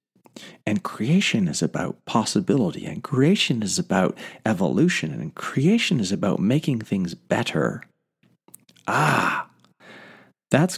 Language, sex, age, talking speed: English, male, 40-59, 105 wpm